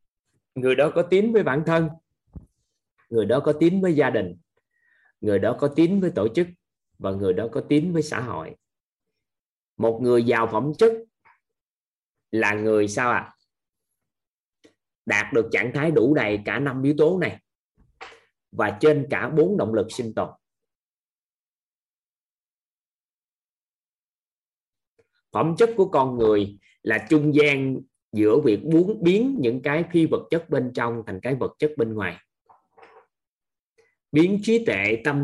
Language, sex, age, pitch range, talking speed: Vietnamese, male, 20-39, 105-165 Hz, 145 wpm